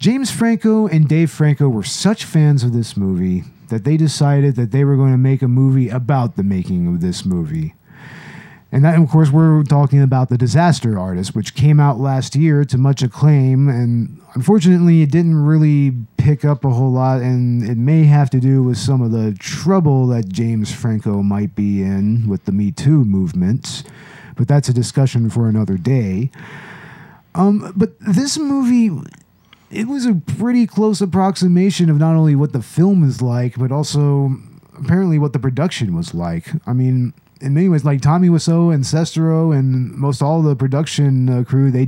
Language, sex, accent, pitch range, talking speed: English, male, American, 125-160 Hz, 185 wpm